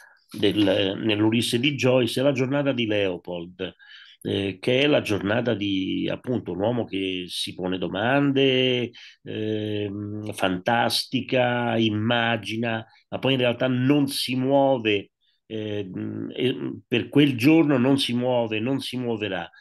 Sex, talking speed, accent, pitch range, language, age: male, 125 wpm, native, 100-125 Hz, Italian, 40-59